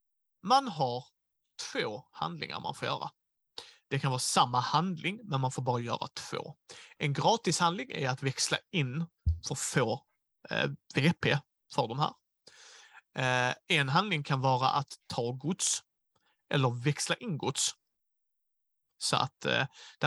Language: Swedish